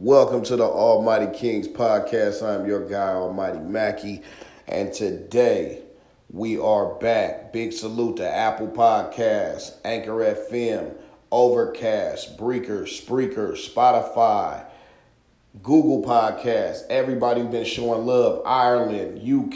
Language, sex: English, male